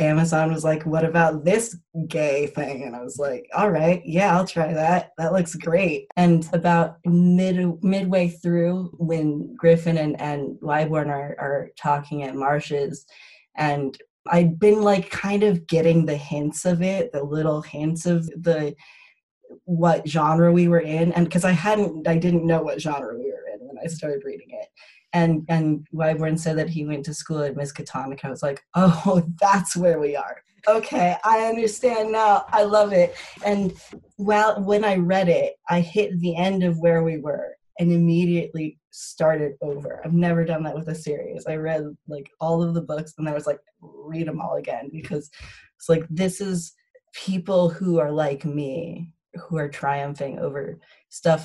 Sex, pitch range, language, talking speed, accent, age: female, 150-180 Hz, English, 180 wpm, American, 20-39